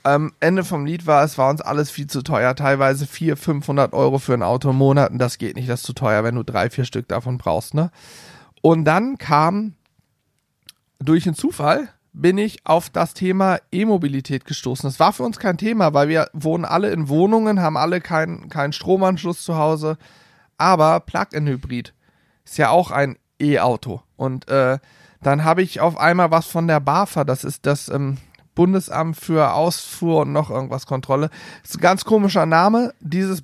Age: 40-59